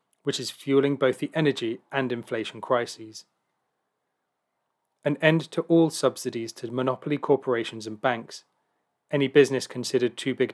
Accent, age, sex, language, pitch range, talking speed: British, 30-49, male, English, 120-145 Hz, 135 wpm